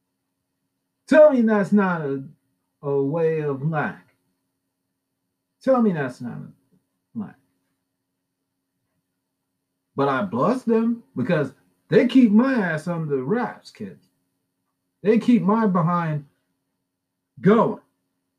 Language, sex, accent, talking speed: English, male, American, 110 wpm